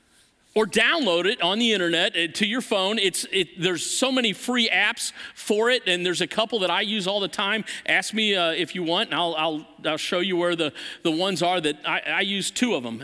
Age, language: 50-69, English